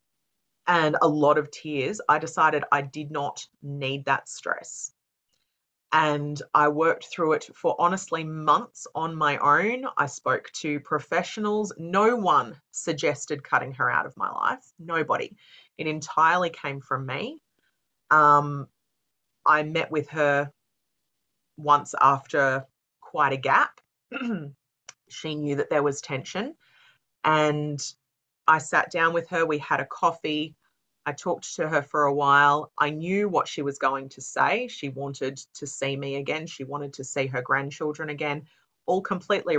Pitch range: 145-170 Hz